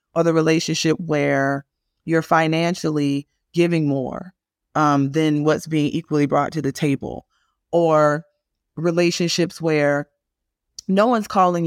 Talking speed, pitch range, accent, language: 120 wpm, 140-175 Hz, American, English